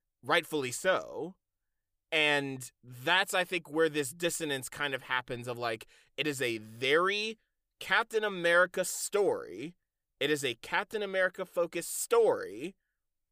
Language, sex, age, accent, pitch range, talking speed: English, male, 30-49, American, 130-180 Hz, 125 wpm